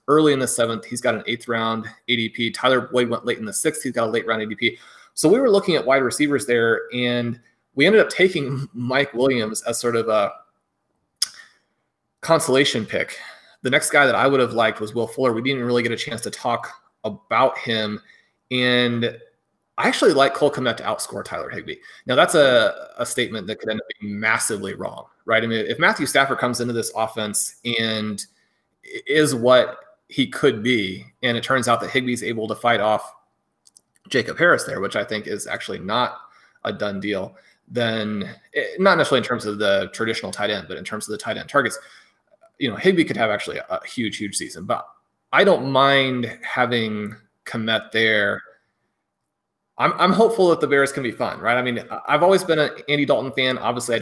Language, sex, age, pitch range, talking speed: English, male, 30-49, 115-135 Hz, 200 wpm